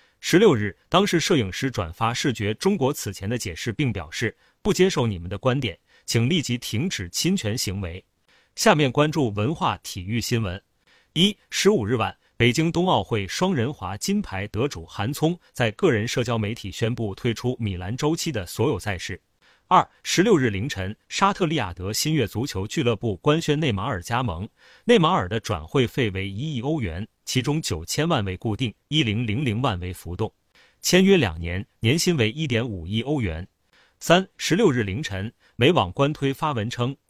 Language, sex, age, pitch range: Chinese, male, 30-49, 105-145 Hz